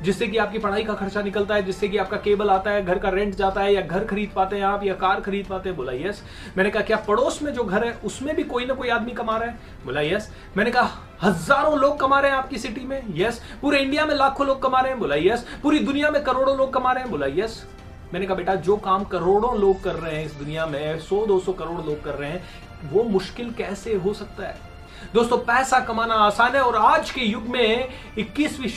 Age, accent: 30-49, native